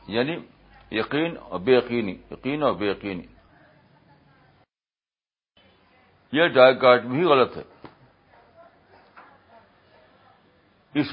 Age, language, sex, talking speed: 60-79, Urdu, male, 80 wpm